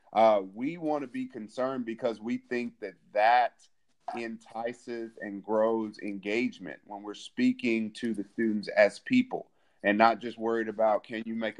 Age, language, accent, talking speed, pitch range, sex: 30-49, English, American, 160 wpm, 105-115 Hz, male